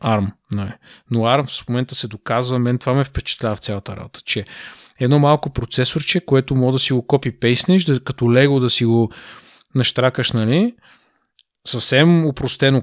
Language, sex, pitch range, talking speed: Bulgarian, male, 115-140 Hz, 160 wpm